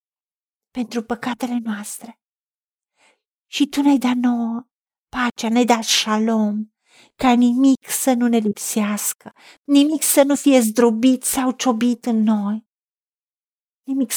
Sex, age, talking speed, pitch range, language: female, 50-69, 120 wpm, 215-250 Hz, Romanian